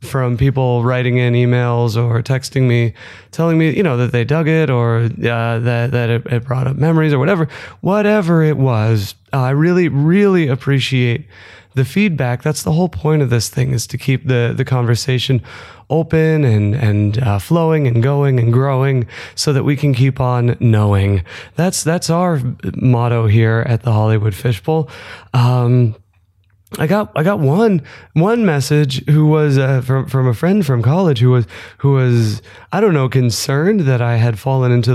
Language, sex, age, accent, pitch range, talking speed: English, male, 20-39, American, 120-150 Hz, 180 wpm